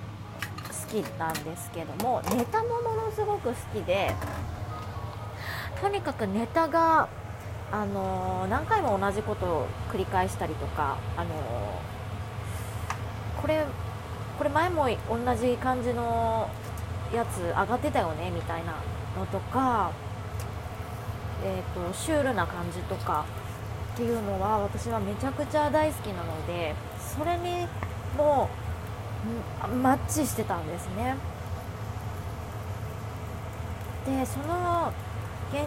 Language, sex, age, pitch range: Japanese, female, 20-39, 95-105 Hz